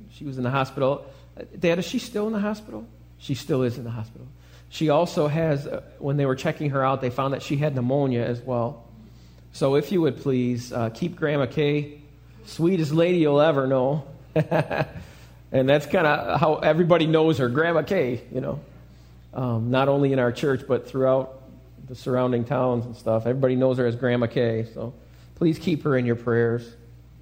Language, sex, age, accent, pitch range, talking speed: English, male, 40-59, American, 110-145 Hz, 190 wpm